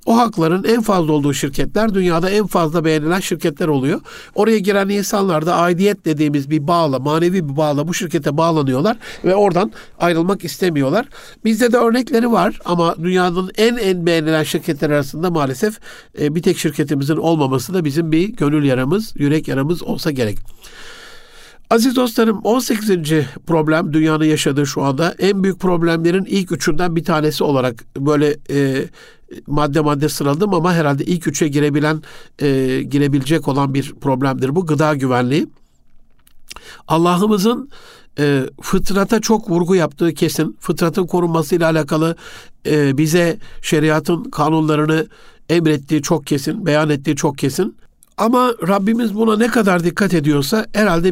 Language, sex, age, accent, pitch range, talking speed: Turkish, male, 60-79, native, 150-190 Hz, 135 wpm